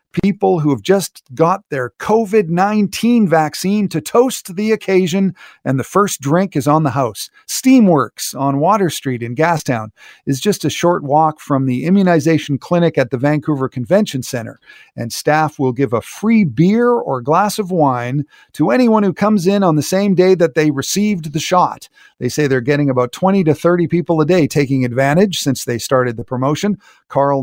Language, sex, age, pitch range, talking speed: English, male, 50-69, 135-185 Hz, 185 wpm